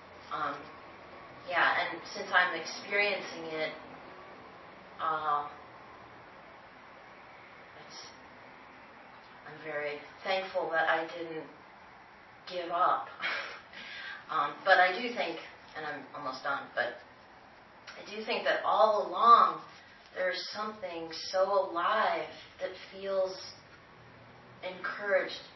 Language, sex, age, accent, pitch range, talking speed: English, female, 30-49, American, 160-195 Hz, 90 wpm